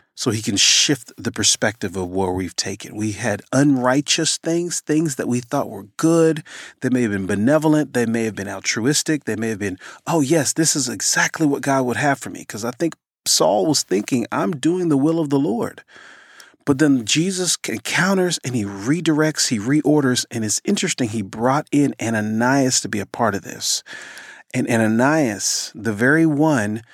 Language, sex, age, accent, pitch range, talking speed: English, male, 40-59, American, 110-155 Hz, 190 wpm